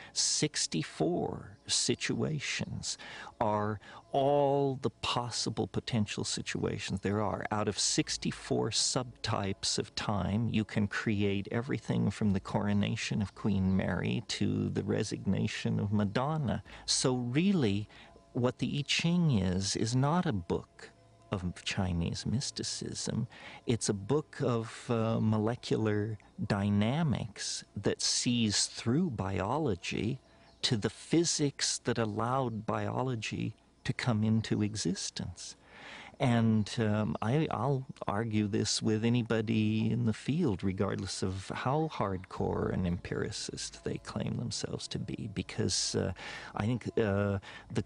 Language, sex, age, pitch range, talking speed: English, male, 50-69, 100-120 Hz, 115 wpm